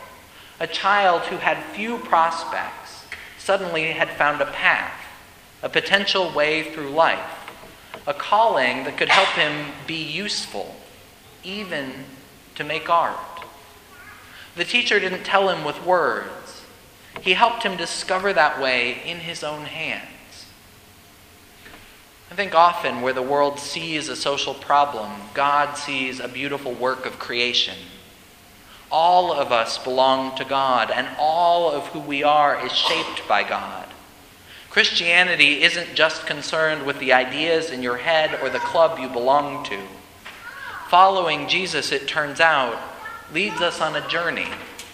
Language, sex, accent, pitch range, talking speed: English, male, American, 130-175 Hz, 140 wpm